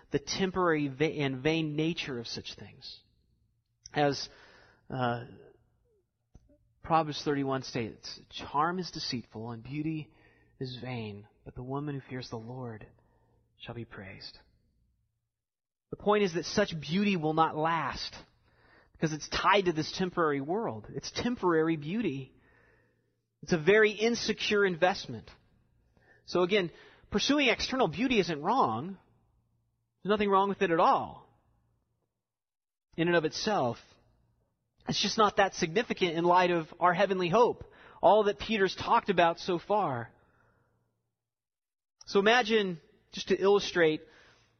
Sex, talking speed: male, 130 wpm